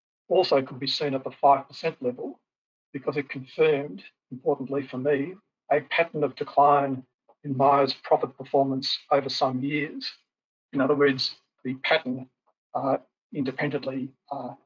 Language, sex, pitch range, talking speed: English, male, 135-150 Hz, 135 wpm